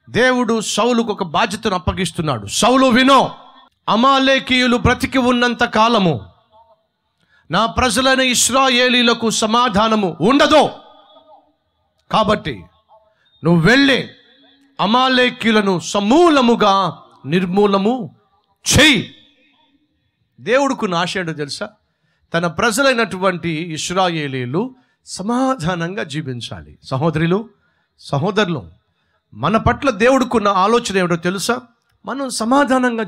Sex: male